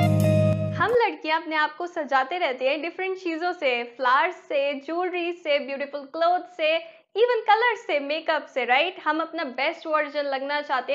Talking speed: 155 wpm